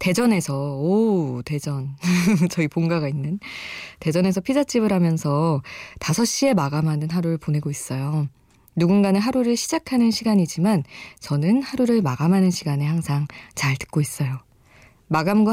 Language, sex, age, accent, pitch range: Korean, female, 20-39, native, 145-195 Hz